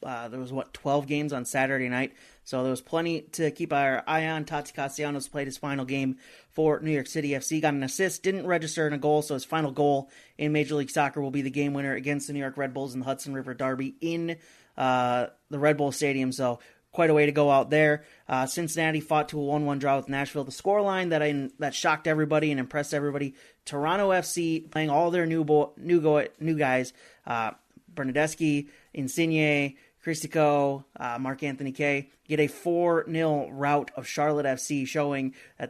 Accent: American